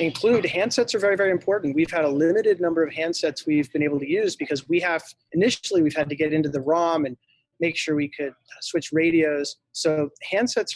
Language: English